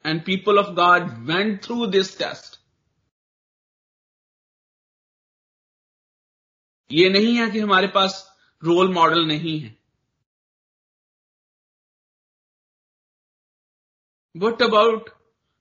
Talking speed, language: 75 wpm, Hindi